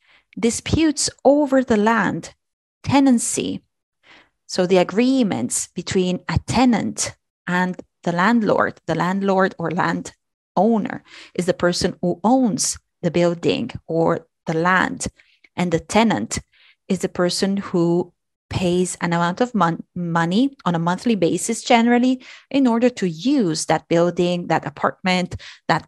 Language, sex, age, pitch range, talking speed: Italian, female, 30-49, 175-240 Hz, 130 wpm